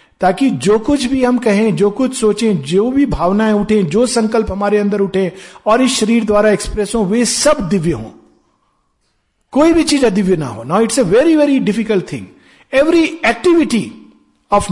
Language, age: Hindi, 50-69